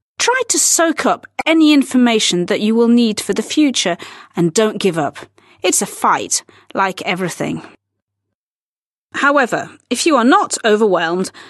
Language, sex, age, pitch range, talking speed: Slovak, female, 40-59, 180-280 Hz, 145 wpm